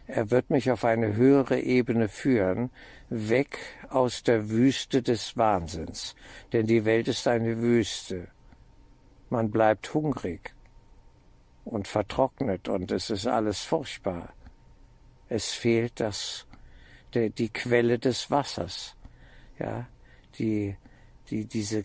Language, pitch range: German, 100-125 Hz